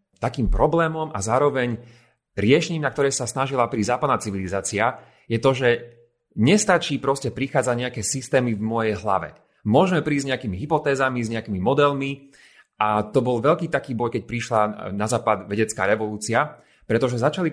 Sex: male